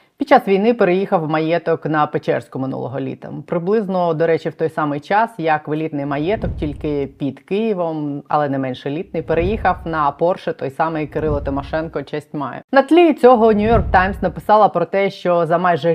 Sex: female